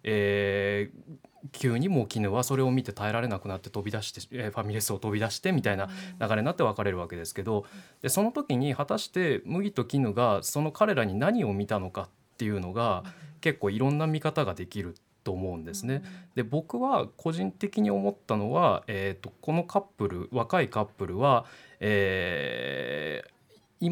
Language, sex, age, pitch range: Japanese, male, 20-39, 105-150 Hz